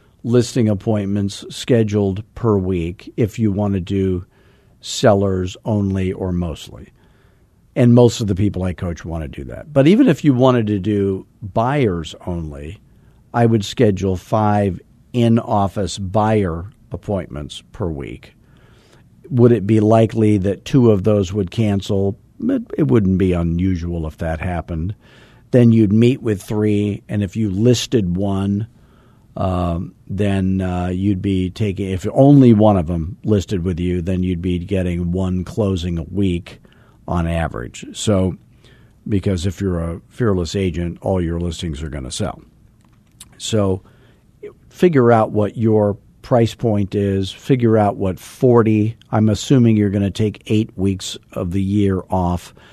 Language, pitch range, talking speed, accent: English, 95-115 Hz, 150 wpm, American